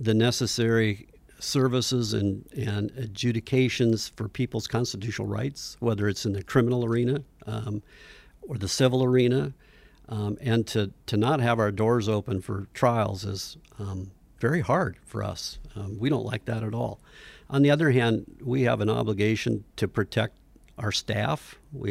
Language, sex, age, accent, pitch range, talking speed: English, male, 50-69, American, 100-125 Hz, 160 wpm